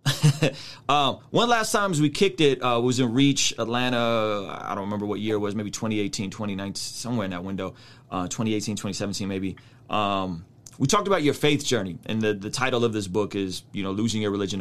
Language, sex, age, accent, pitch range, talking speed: English, male, 30-49, American, 110-130 Hz, 205 wpm